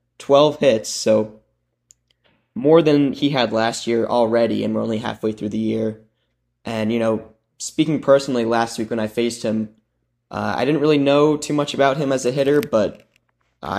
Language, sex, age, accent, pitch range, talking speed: English, male, 10-29, American, 110-130 Hz, 185 wpm